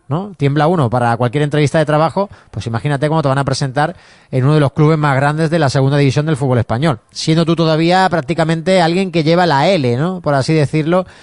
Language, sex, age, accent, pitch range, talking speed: Spanish, male, 30-49, Spanish, 140-170 Hz, 225 wpm